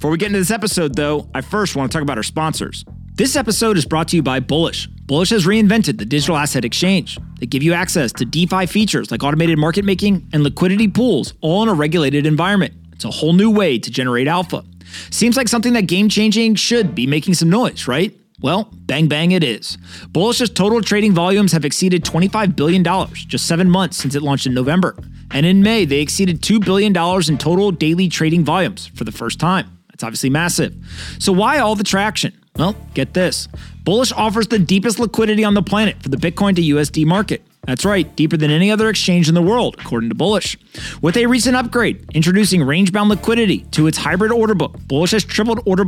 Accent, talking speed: American, 210 wpm